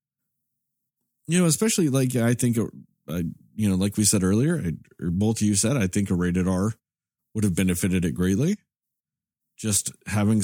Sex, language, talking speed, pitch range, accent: male, English, 170 wpm, 105-155 Hz, American